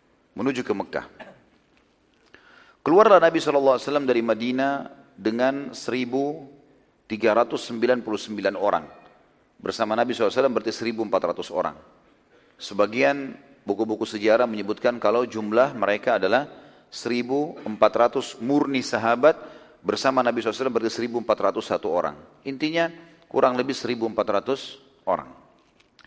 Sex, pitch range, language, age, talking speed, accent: male, 110-140 Hz, Indonesian, 40-59, 90 wpm, native